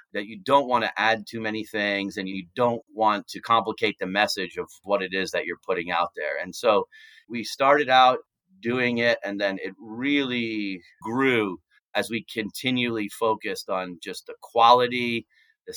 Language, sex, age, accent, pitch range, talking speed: English, male, 30-49, American, 100-120 Hz, 175 wpm